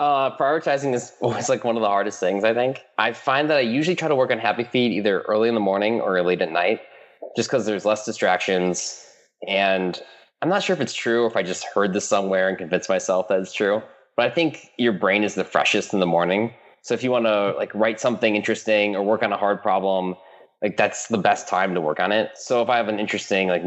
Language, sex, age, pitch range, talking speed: English, male, 20-39, 90-110 Hz, 250 wpm